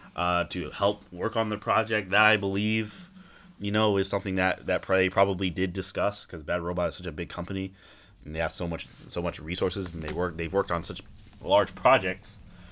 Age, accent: 20-39, American